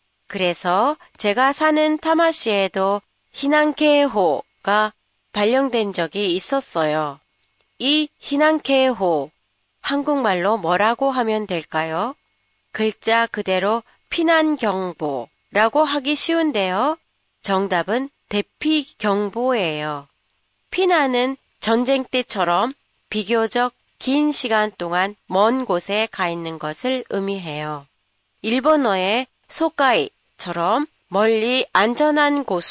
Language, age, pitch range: Japanese, 30-49, 185-275 Hz